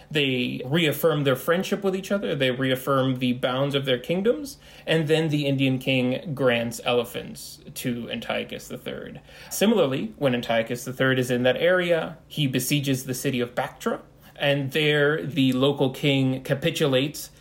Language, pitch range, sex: English, 125-145 Hz, male